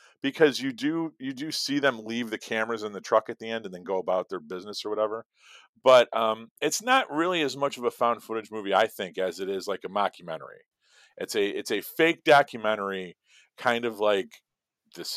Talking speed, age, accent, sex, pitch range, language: 215 wpm, 40-59, American, male, 105-145 Hz, English